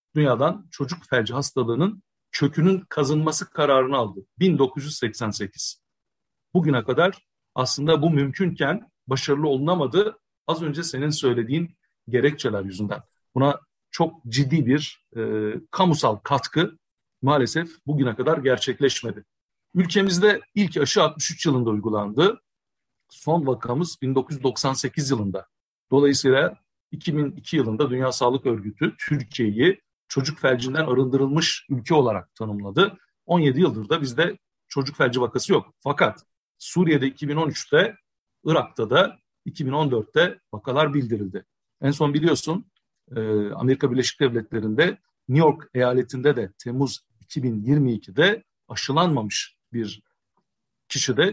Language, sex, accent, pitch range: Turkish, male, native, 125-160 Hz